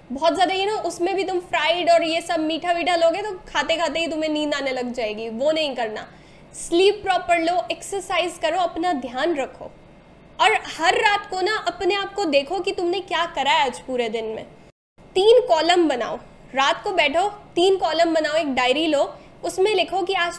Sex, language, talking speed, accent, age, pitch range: female, Hindi, 200 wpm, native, 10-29, 290-365 Hz